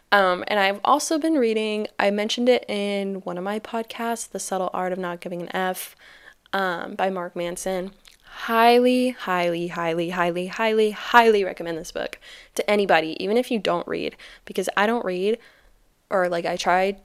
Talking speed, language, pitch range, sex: 175 wpm, English, 175-220 Hz, female